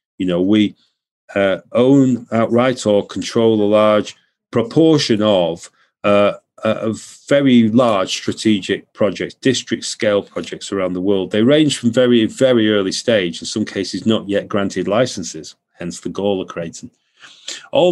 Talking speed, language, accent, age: 145 wpm, English, British, 40-59